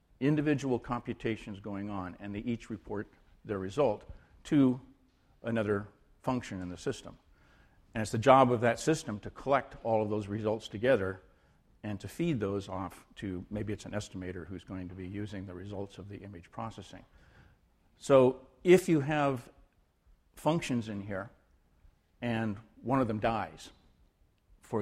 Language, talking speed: English, 155 wpm